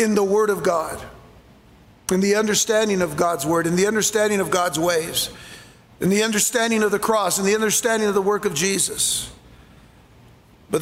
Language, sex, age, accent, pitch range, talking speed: English, male, 50-69, American, 200-250 Hz, 175 wpm